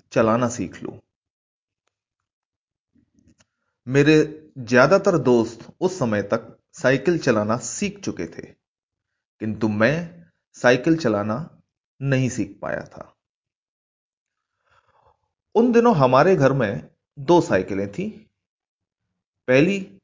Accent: native